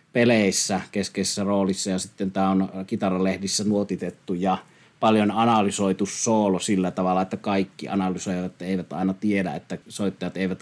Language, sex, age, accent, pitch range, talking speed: Finnish, male, 30-49, native, 95-110 Hz, 135 wpm